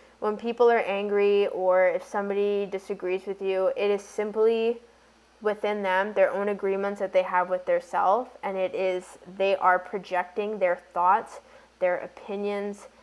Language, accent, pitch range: English, American, 180-205 Hz